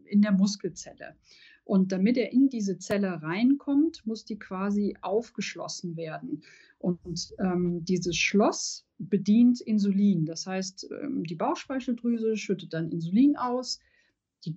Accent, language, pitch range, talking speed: German, German, 180-230 Hz, 125 wpm